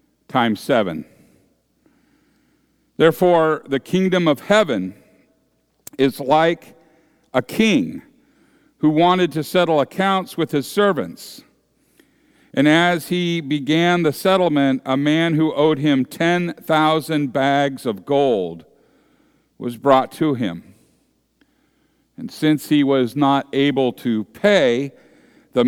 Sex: male